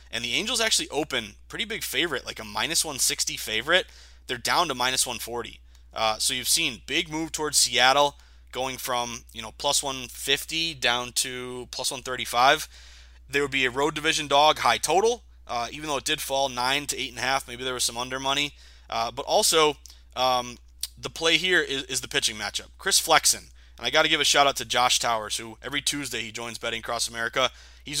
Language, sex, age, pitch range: English, male, 20-39, 110-140 Hz